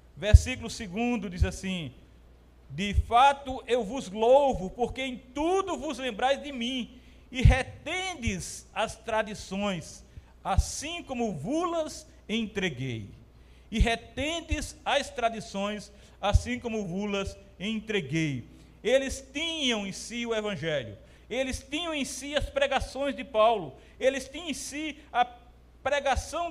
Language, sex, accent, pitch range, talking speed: Portuguese, male, Brazilian, 185-270 Hz, 120 wpm